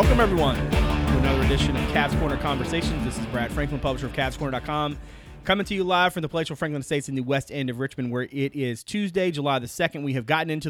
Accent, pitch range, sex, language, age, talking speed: American, 120-145 Hz, male, English, 30-49, 235 wpm